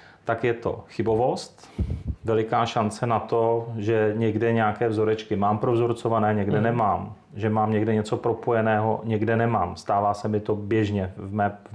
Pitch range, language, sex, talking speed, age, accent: 105-115 Hz, Czech, male, 160 wpm, 30-49, native